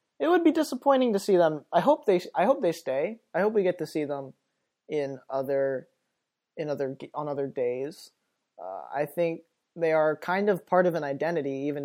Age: 20-39